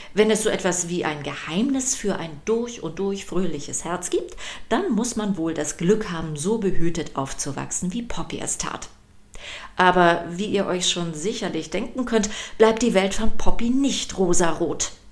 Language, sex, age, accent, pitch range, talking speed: German, female, 40-59, German, 165-220 Hz, 175 wpm